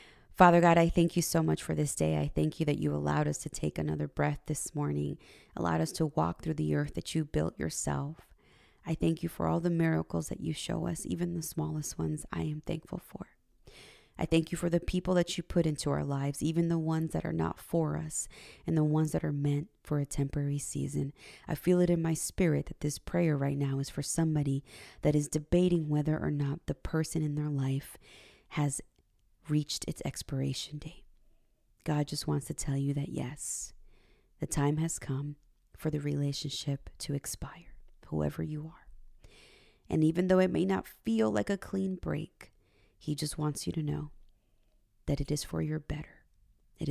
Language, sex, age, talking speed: English, female, 20-39, 200 wpm